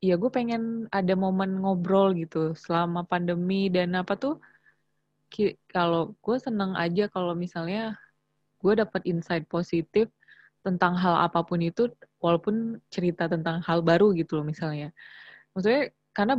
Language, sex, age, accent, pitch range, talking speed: Indonesian, female, 20-39, native, 175-205 Hz, 130 wpm